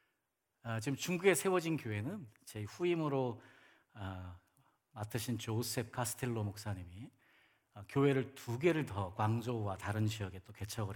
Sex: male